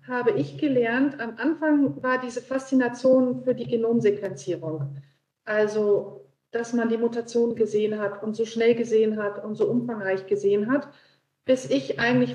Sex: female